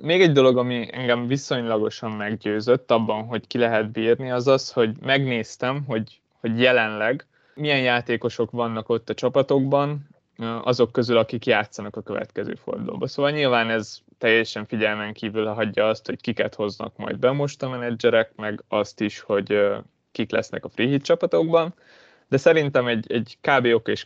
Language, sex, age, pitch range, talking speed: Hungarian, male, 20-39, 115-135 Hz, 160 wpm